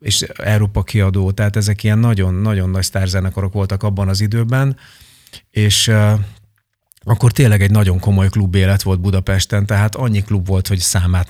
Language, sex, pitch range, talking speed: Hungarian, male, 100-110 Hz, 160 wpm